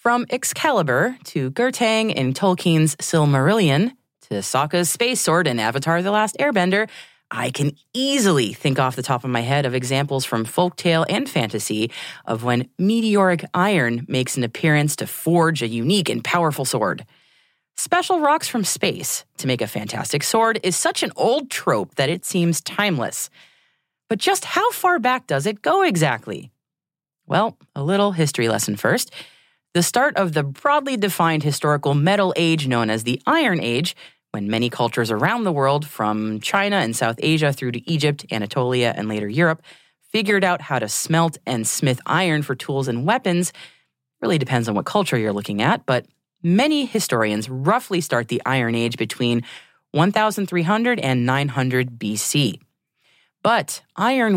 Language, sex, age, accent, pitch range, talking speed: English, female, 30-49, American, 125-195 Hz, 160 wpm